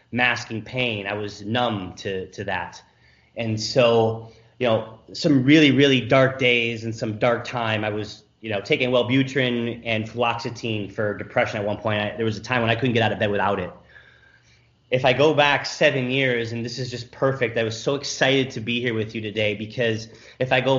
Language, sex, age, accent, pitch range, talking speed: English, male, 30-49, American, 105-125 Hz, 210 wpm